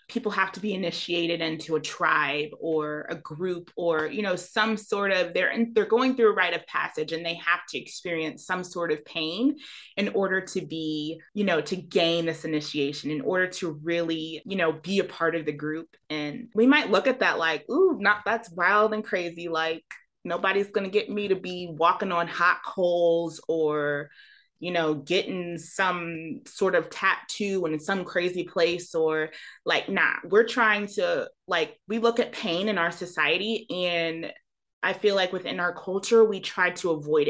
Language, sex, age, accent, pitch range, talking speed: English, female, 20-39, American, 165-210 Hz, 190 wpm